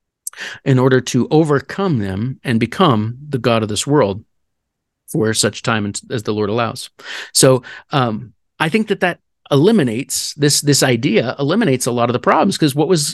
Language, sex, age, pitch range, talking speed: English, male, 40-59, 125-155 Hz, 175 wpm